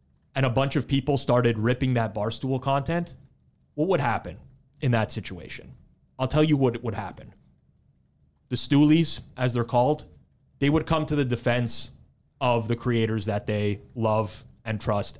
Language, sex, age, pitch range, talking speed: English, male, 30-49, 110-135 Hz, 160 wpm